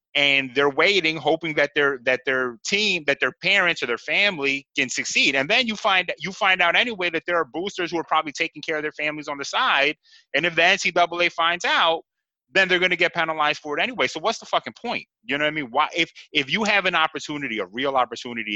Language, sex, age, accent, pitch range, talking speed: English, male, 30-49, American, 135-170 Hz, 240 wpm